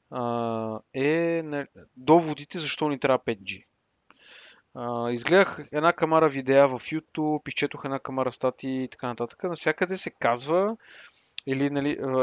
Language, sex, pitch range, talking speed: Bulgarian, male, 120-150 Hz, 115 wpm